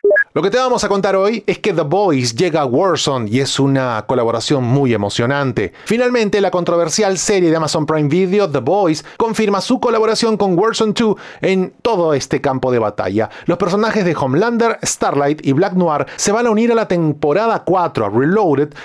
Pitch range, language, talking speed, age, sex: 140-210 Hz, Spanish, 190 wpm, 30-49, male